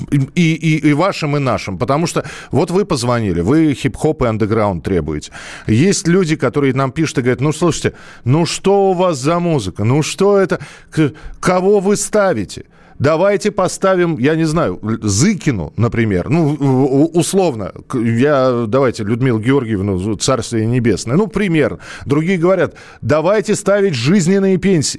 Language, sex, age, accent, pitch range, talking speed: Russian, male, 40-59, native, 120-180 Hz, 145 wpm